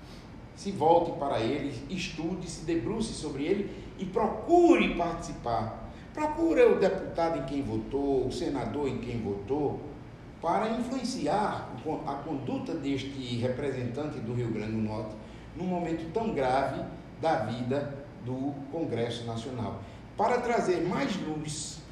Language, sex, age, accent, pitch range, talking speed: English, male, 60-79, Brazilian, 125-185 Hz, 130 wpm